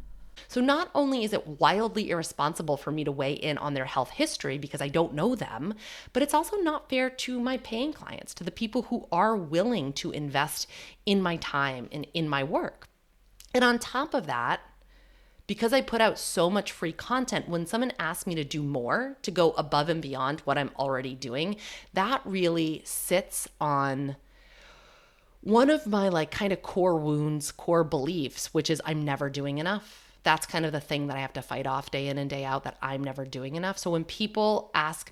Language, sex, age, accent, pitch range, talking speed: English, female, 30-49, American, 140-205 Hz, 205 wpm